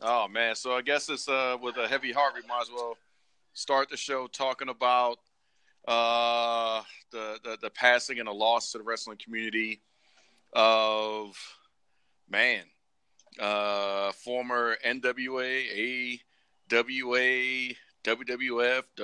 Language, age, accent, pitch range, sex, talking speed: English, 40-59, American, 105-125 Hz, male, 125 wpm